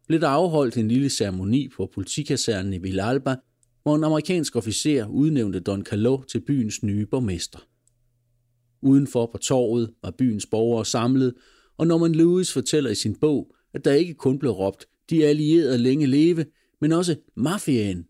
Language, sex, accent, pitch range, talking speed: Danish, male, native, 115-145 Hz, 160 wpm